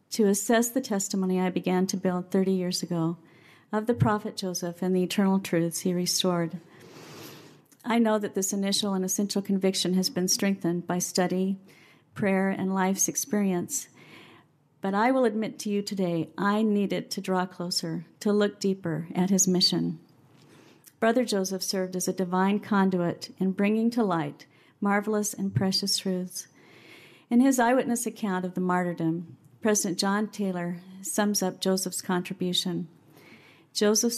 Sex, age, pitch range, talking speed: female, 50-69, 175-205 Hz, 150 wpm